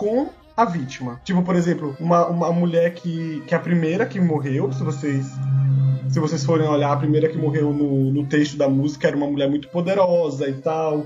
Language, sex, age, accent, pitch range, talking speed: Portuguese, male, 20-39, Brazilian, 150-195 Hz, 195 wpm